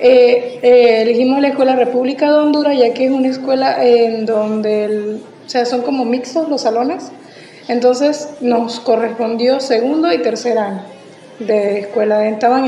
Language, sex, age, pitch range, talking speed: Spanish, female, 20-39, 225-265 Hz, 155 wpm